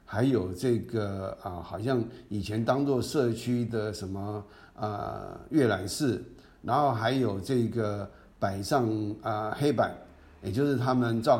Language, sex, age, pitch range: Chinese, male, 50-69, 105-130 Hz